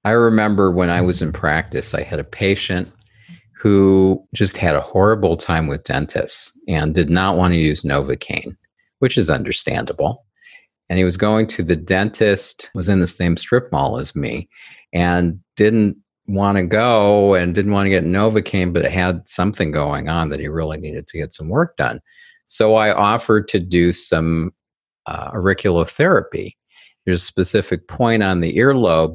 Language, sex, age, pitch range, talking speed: English, male, 50-69, 80-100 Hz, 175 wpm